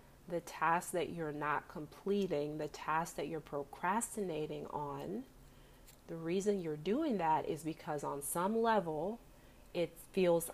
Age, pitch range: 30-49, 155-190 Hz